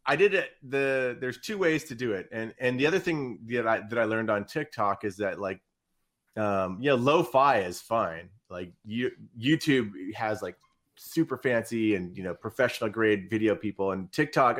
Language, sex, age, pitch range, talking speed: English, male, 30-49, 100-140 Hz, 195 wpm